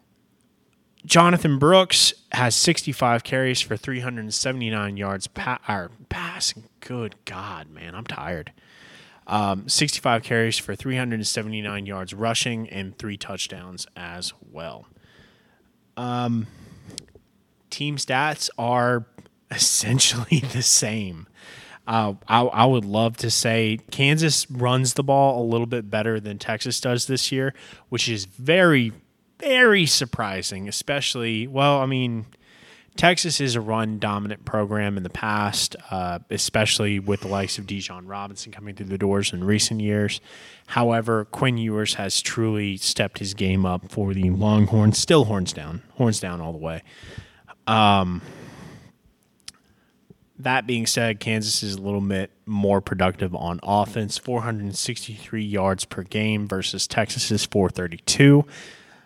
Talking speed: 130 wpm